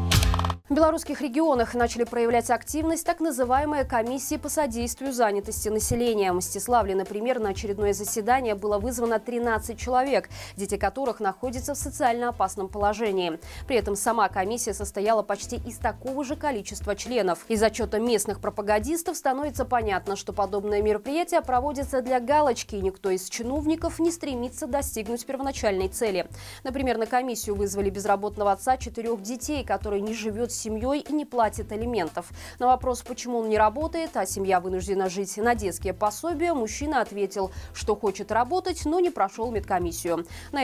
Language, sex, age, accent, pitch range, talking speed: Russian, female, 20-39, native, 205-275 Hz, 150 wpm